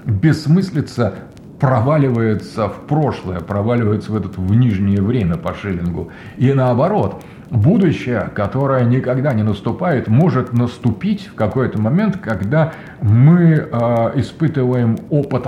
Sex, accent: male, native